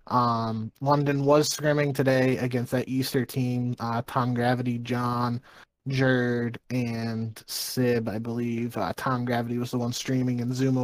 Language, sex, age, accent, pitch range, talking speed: English, male, 20-39, American, 120-135 Hz, 150 wpm